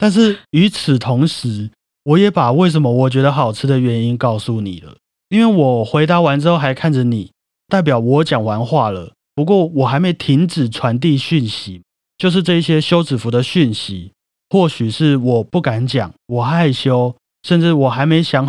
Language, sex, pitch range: Chinese, male, 115-155 Hz